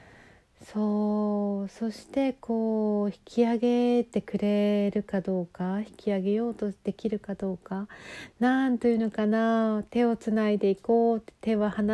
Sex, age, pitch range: female, 40-59, 190-235 Hz